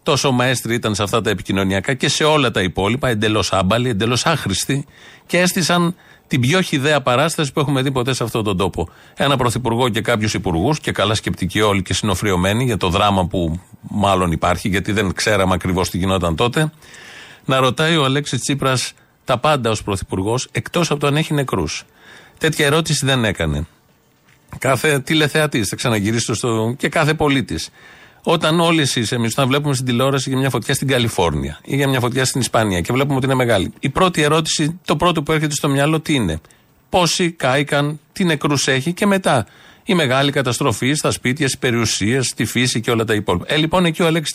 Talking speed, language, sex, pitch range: 190 wpm, Greek, male, 115-155 Hz